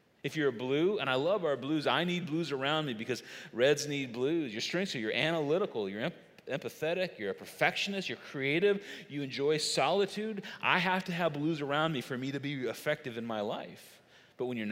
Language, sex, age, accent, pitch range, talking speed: English, male, 40-59, American, 150-200 Hz, 210 wpm